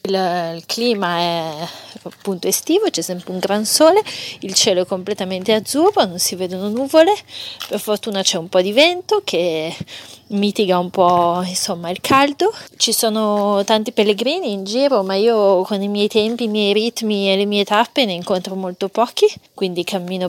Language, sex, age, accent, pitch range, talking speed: Italian, female, 30-49, native, 185-225 Hz, 175 wpm